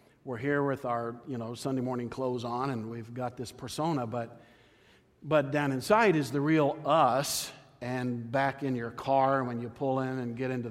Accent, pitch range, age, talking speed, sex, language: American, 125-150 Hz, 50-69, 195 wpm, male, English